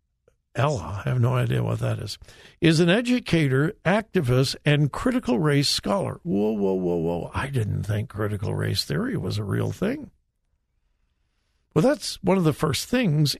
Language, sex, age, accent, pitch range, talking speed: English, male, 60-79, American, 125-175 Hz, 165 wpm